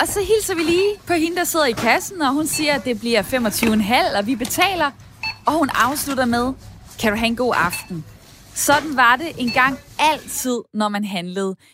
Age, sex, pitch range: 20-39, female, 210-290 Hz